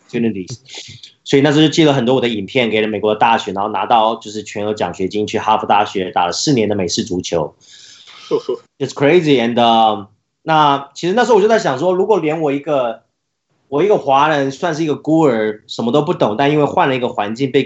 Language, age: Chinese, 20-39